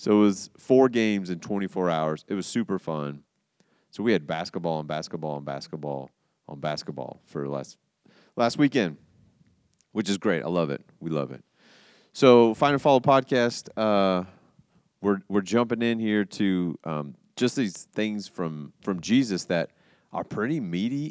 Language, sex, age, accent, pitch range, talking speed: English, male, 30-49, American, 80-105 Hz, 165 wpm